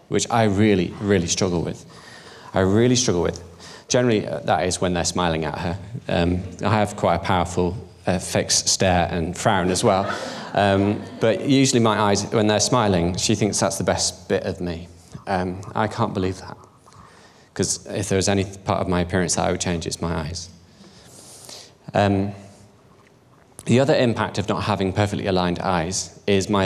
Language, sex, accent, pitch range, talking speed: English, male, British, 90-105 Hz, 180 wpm